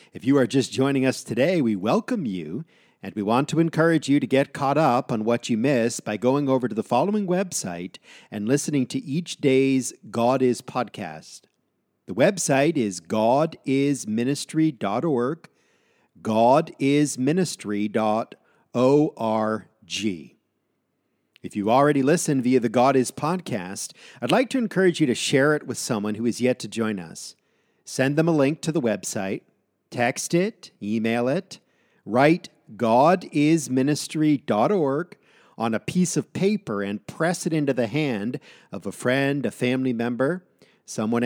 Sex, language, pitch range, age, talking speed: male, English, 120-155 Hz, 50-69, 145 wpm